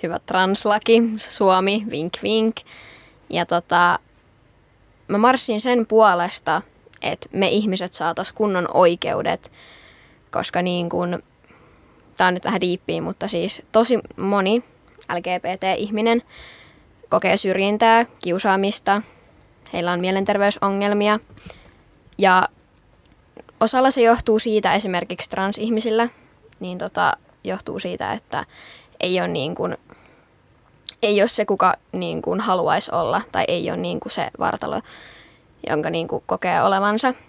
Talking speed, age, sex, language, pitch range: 115 wpm, 20-39, female, Finnish, 180-225 Hz